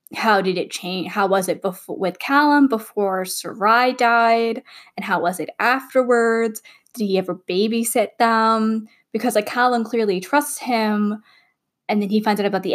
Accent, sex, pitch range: American, female, 185-225 Hz